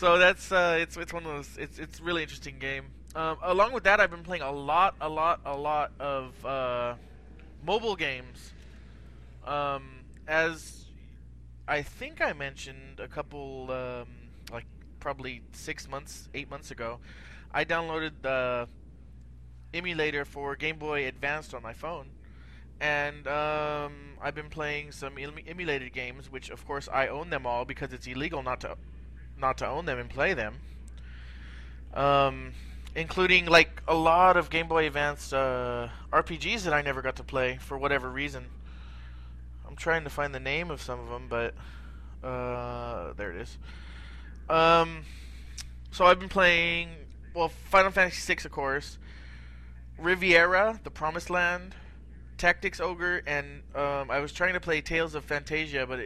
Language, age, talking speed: English, 20-39, 155 wpm